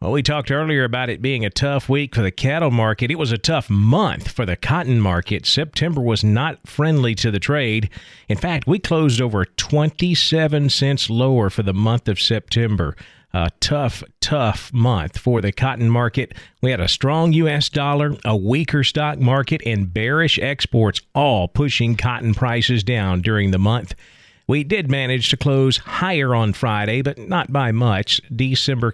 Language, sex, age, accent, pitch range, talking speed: English, male, 40-59, American, 110-150 Hz, 175 wpm